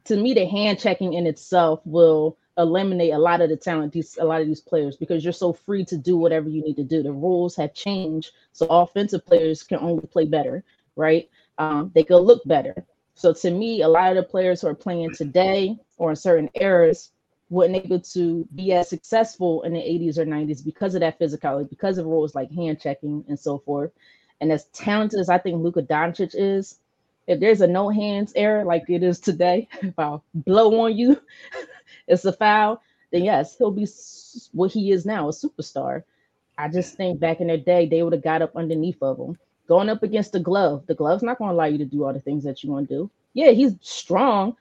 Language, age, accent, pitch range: English, 30-49, American, 160-200 Hz